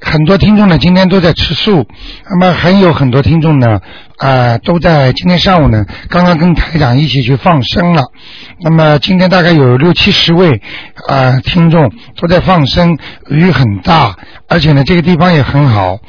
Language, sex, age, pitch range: Chinese, male, 60-79, 130-175 Hz